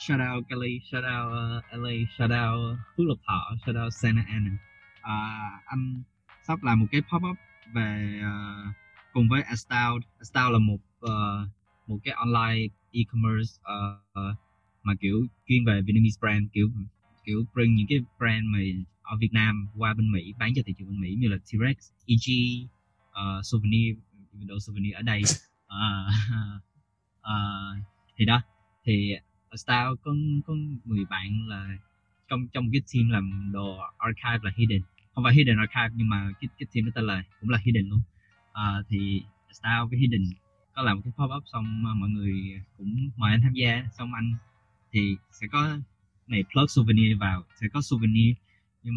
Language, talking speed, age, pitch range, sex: Vietnamese, 180 wpm, 20-39, 100-120 Hz, male